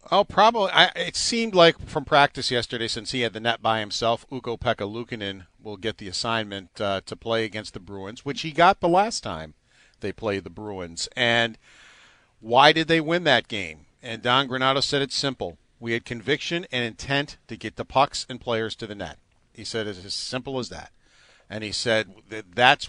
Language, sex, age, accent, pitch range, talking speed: English, male, 50-69, American, 105-125 Hz, 200 wpm